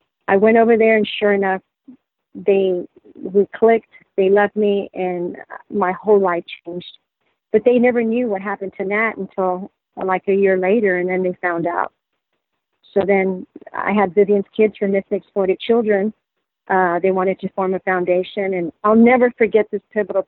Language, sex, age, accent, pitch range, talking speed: English, female, 40-59, American, 180-205 Hz, 175 wpm